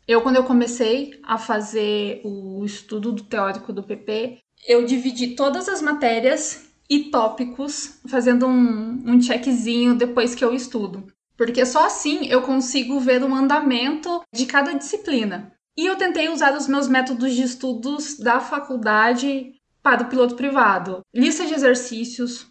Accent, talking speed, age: Brazilian, 145 wpm, 20-39